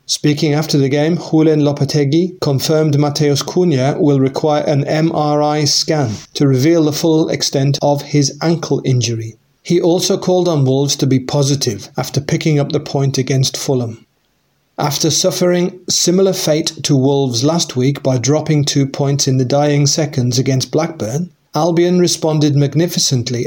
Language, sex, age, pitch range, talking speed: English, male, 30-49, 140-160 Hz, 150 wpm